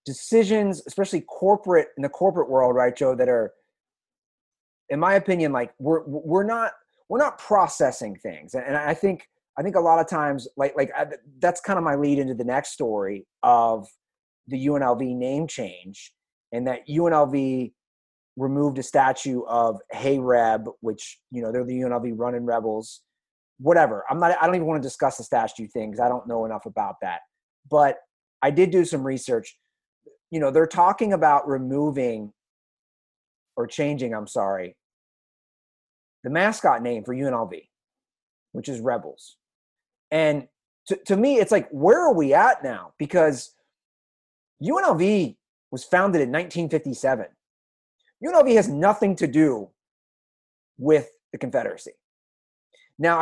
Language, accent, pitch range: English, American, 125-185 Hz